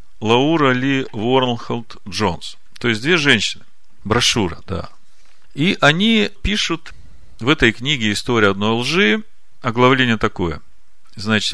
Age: 40-59